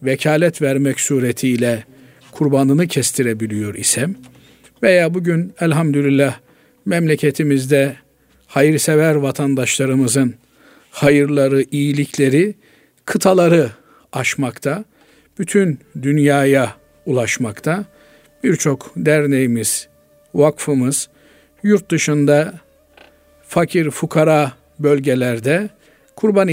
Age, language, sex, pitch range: 50-69, Turkish, male, 130-160 Hz